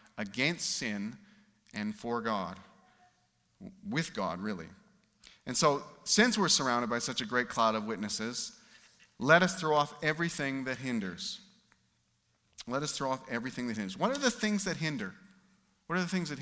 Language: English